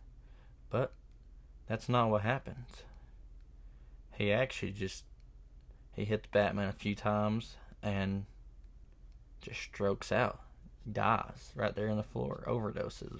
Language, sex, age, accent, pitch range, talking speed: English, male, 20-39, American, 65-105 Hz, 115 wpm